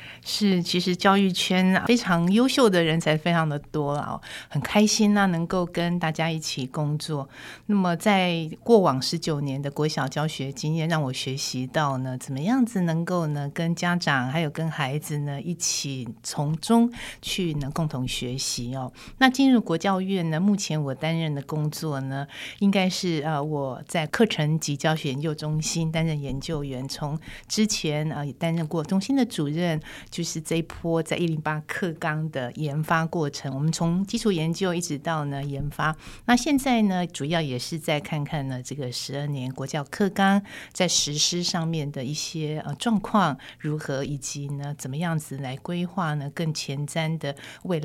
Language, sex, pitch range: Chinese, female, 145-175 Hz